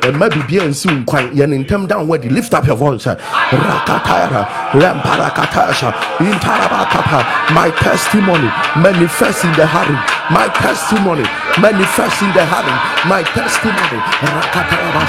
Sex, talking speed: male, 165 wpm